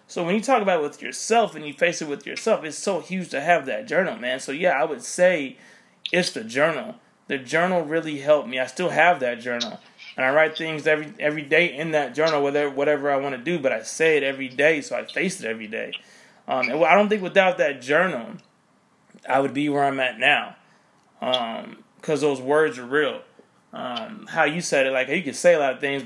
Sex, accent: male, American